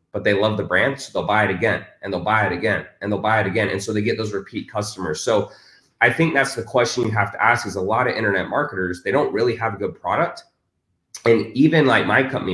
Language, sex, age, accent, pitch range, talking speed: English, male, 20-39, American, 100-125 Hz, 265 wpm